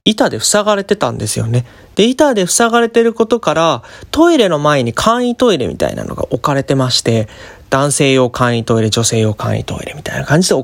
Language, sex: Japanese, male